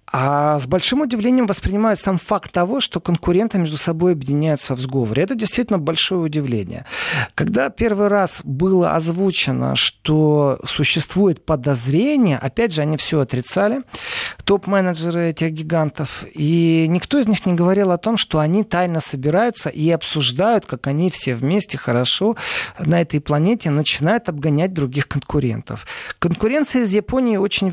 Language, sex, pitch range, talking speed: Russian, male, 150-210 Hz, 140 wpm